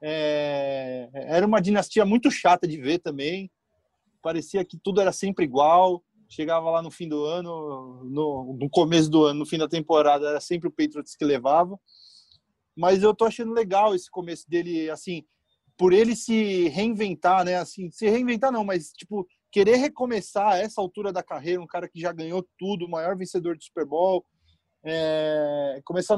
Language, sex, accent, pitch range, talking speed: Portuguese, male, Brazilian, 155-200 Hz, 175 wpm